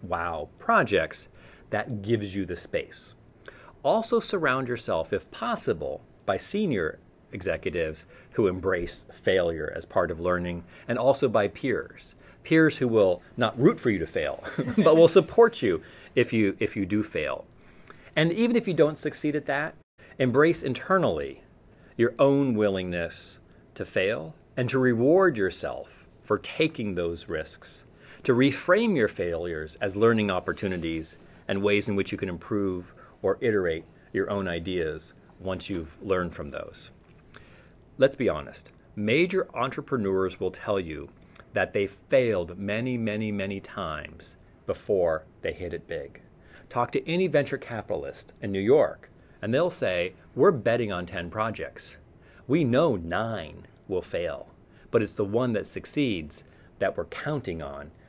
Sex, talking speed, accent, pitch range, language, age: male, 150 wpm, American, 95-150 Hz, English, 40-59